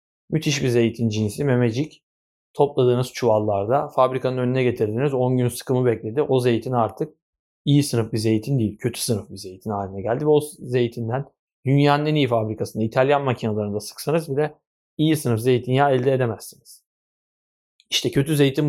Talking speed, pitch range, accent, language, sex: 150 wpm, 115-145 Hz, native, Turkish, male